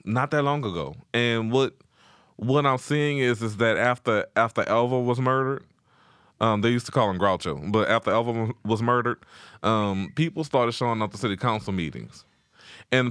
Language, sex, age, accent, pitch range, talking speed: English, male, 20-39, American, 110-135 Hz, 180 wpm